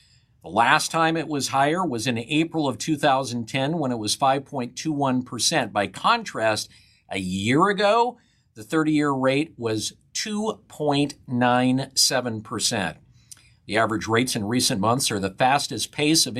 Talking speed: 130 wpm